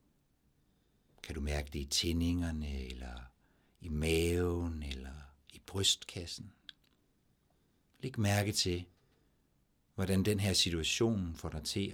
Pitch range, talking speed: 75-100 Hz, 110 wpm